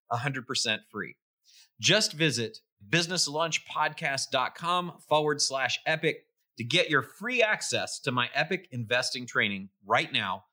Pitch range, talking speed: 120-185 Hz, 110 wpm